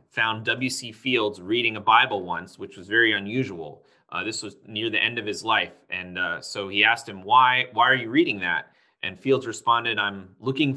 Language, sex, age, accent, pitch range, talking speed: English, male, 30-49, American, 110-140 Hz, 205 wpm